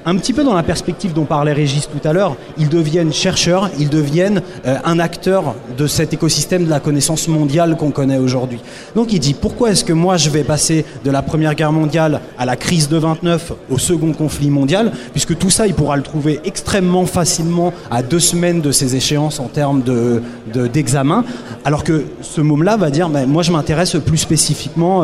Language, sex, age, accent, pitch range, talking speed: French, male, 30-49, French, 140-170 Hz, 205 wpm